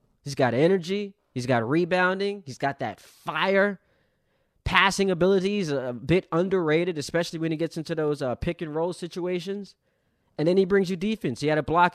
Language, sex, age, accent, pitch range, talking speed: English, male, 20-39, American, 115-160 Hz, 175 wpm